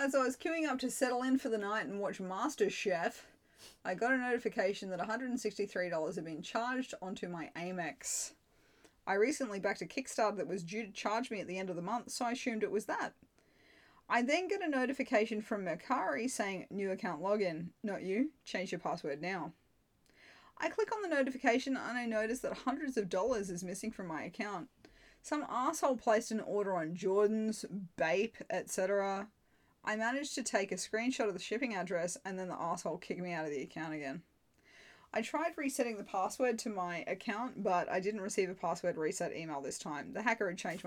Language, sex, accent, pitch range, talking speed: English, female, Australian, 180-245 Hz, 200 wpm